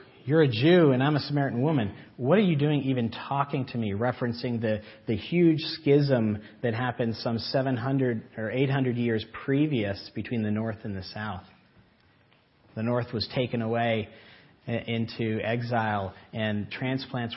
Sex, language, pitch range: male, English, 110-135 Hz